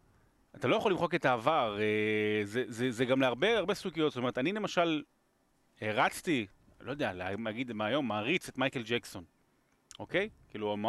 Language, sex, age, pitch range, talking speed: Hebrew, male, 30-49, 125-180 Hz, 155 wpm